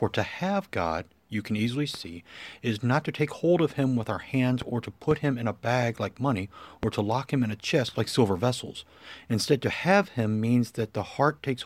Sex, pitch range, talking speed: male, 110-140 Hz, 235 wpm